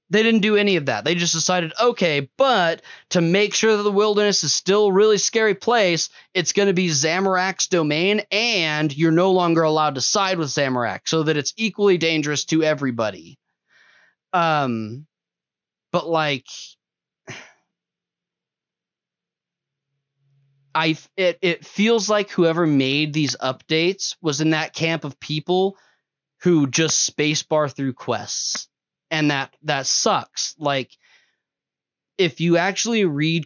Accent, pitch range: American, 135-175 Hz